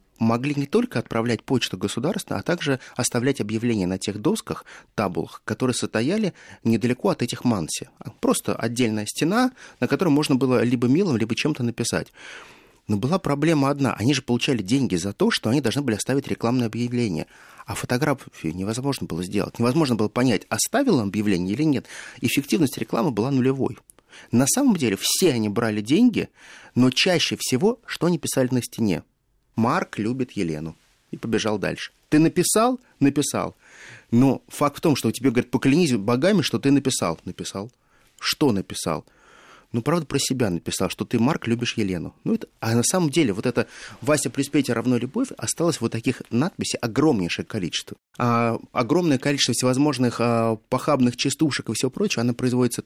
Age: 30-49